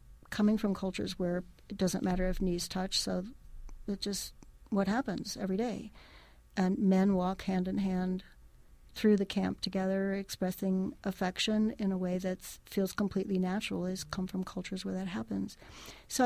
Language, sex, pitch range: English, female, 185-205 Hz